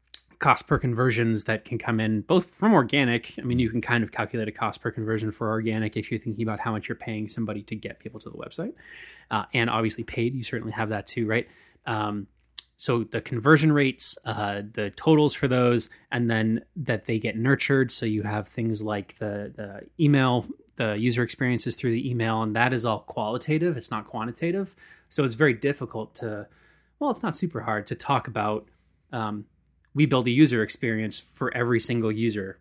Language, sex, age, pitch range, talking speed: English, male, 20-39, 110-130 Hz, 200 wpm